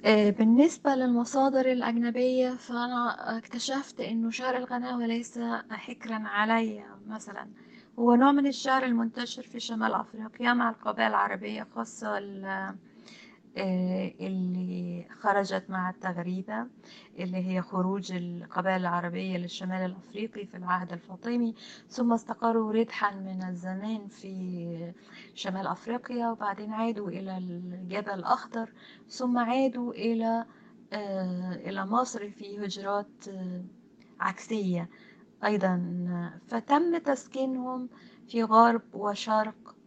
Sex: female